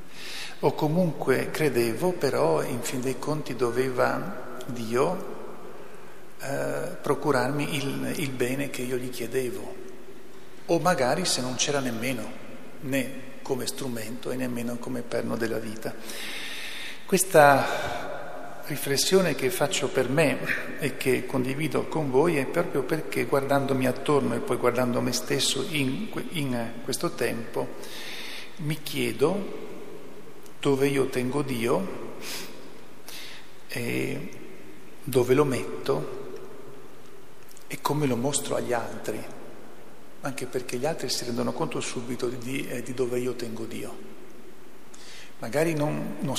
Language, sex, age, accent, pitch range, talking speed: Italian, male, 50-69, native, 125-145 Hz, 120 wpm